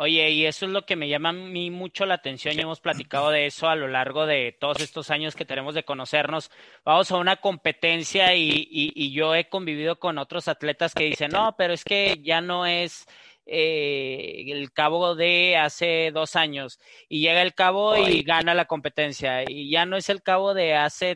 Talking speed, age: 210 wpm, 30-49